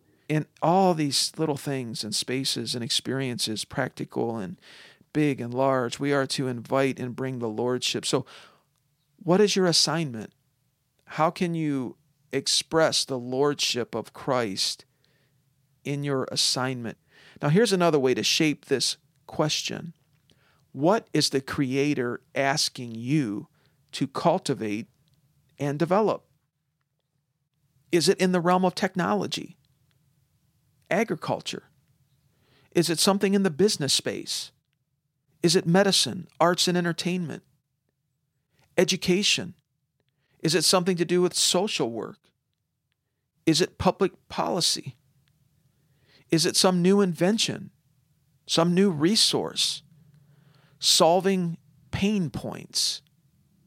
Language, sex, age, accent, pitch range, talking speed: English, male, 50-69, American, 135-175 Hz, 115 wpm